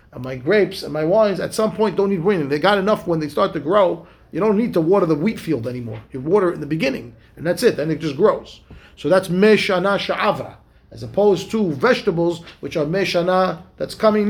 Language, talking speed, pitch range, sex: English, 230 wpm, 150-195 Hz, male